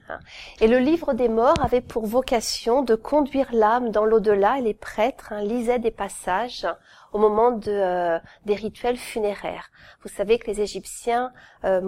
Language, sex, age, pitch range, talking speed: French, female, 40-59, 205-255 Hz, 165 wpm